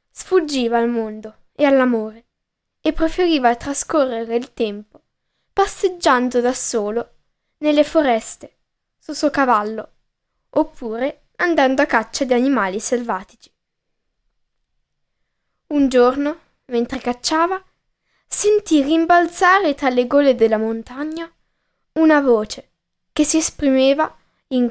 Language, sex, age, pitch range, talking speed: Italian, female, 10-29, 245-330 Hz, 100 wpm